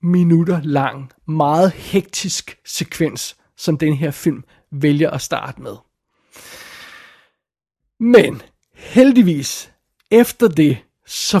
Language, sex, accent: Danish, male, native